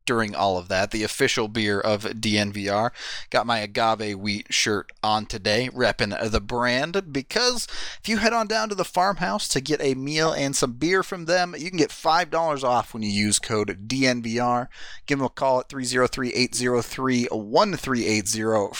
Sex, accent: male, American